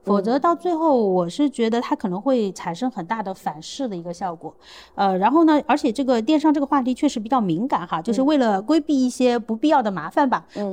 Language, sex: Chinese, female